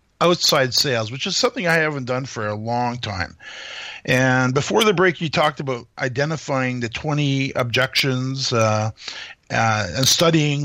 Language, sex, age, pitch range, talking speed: English, male, 50-69, 120-165 Hz, 150 wpm